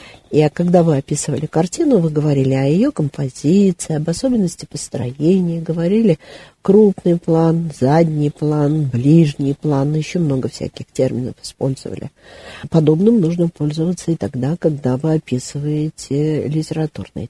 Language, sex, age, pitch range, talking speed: Russian, female, 50-69, 135-175 Hz, 120 wpm